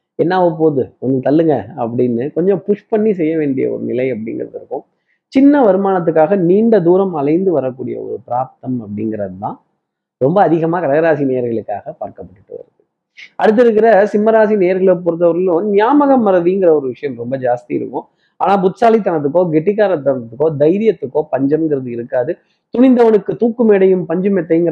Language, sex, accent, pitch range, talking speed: Tamil, male, native, 145-195 Hz, 120 wpm